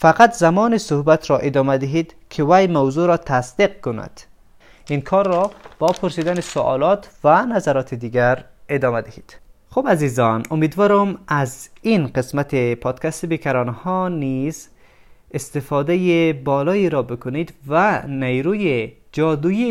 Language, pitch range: Persian, 125-170 Hz